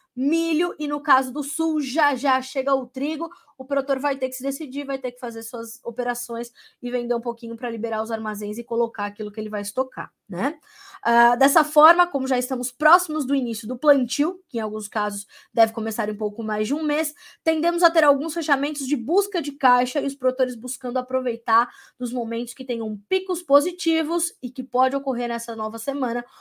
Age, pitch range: 20-39, 230-290 Hz